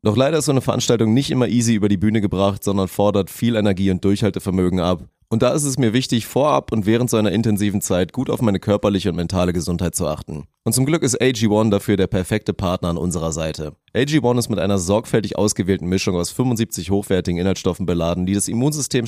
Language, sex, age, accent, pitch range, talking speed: German, male, 30-49, German, 90-115 Hz, 215 wpm